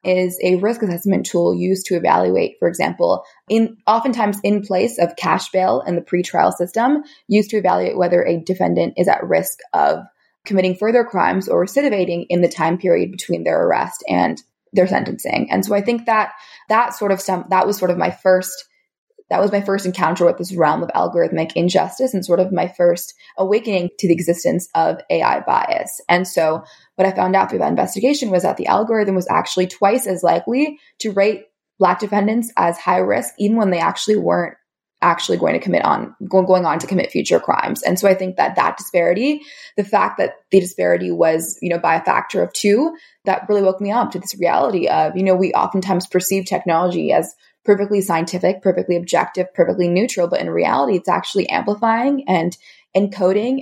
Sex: female